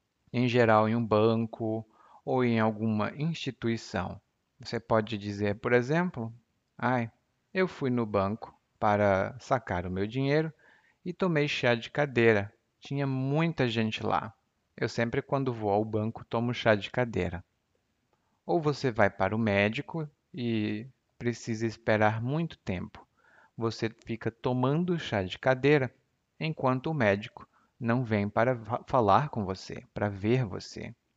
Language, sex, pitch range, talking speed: Portuguese, male, 110-140 Hz, 135 wpm